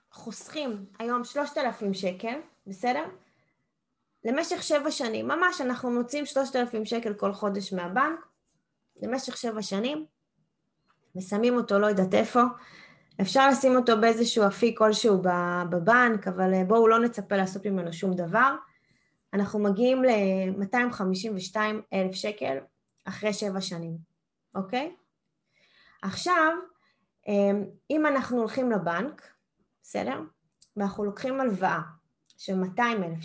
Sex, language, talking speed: female, Hebrew, 110 wpm